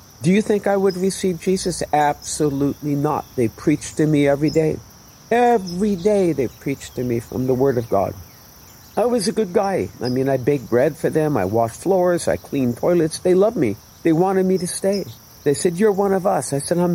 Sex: male